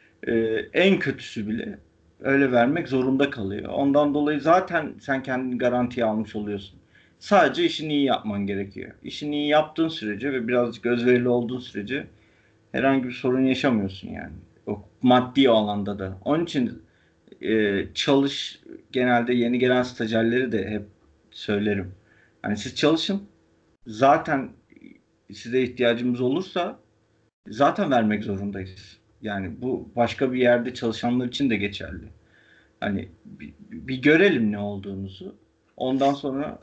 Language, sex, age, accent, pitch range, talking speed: Turkish, male, 50-69, native, 105-130 Hz, 125 wpm